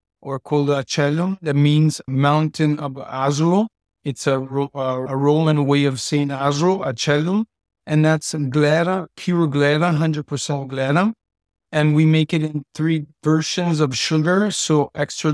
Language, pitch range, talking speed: English, 140-155 Hz, 140 wpm